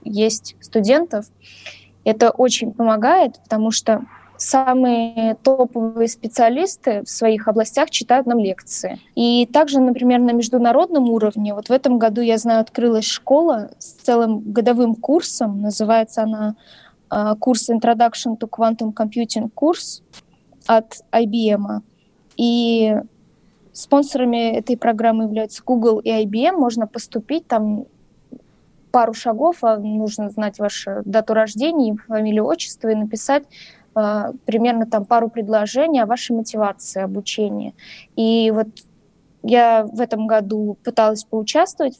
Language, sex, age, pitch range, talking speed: Russian, female, 20-39, 220-245 Hz, 120 wpm